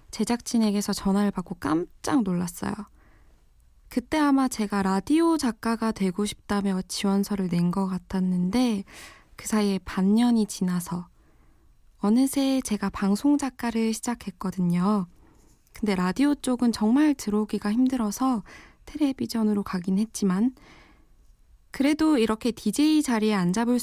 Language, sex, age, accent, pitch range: Korean, female, 20-39, native, 190-250 Hz